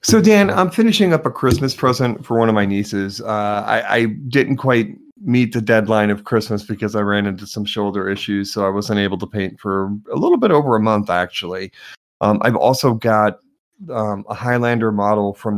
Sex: male